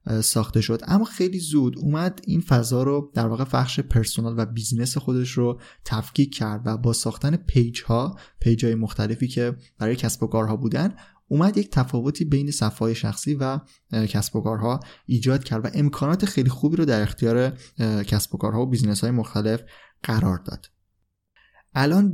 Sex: male